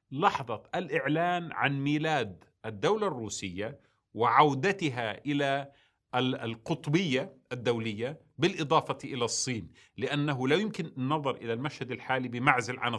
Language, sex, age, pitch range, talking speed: Arabic, male, 40-59, 105-145 Hz, 100 wpm